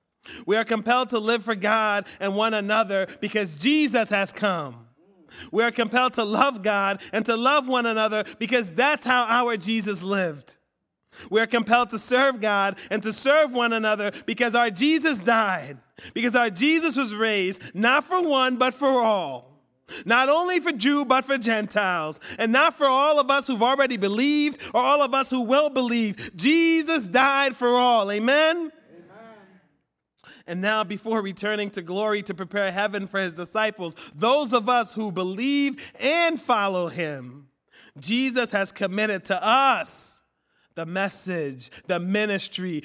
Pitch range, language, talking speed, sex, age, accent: 195-255 Hz, English, 160 wpm, male, 30-49, American